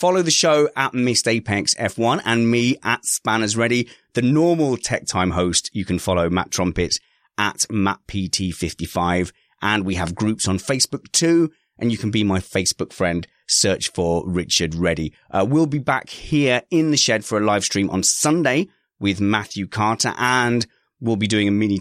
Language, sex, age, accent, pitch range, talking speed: English, male, 30-49, British, 90-115 Hz, 180 wpm